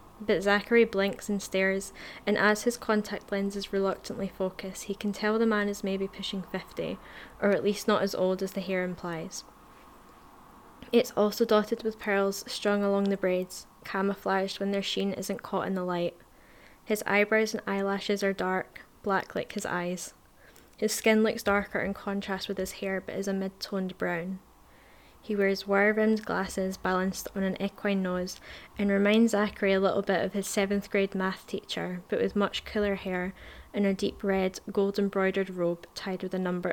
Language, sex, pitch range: English, female, 190-205 Hz